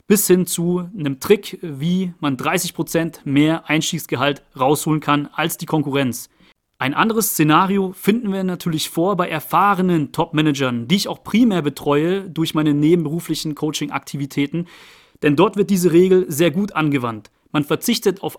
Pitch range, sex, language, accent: 150-185 Hz, male, German, German